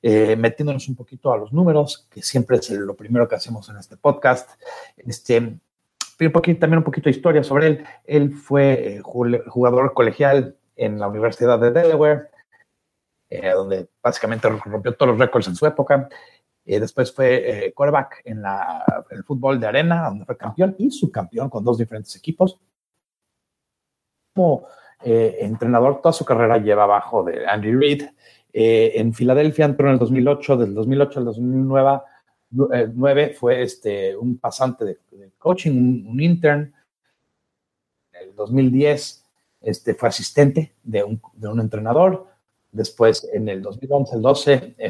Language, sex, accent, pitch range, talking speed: Spanish, male, Mexican, 115-155 Hz, 155 wpm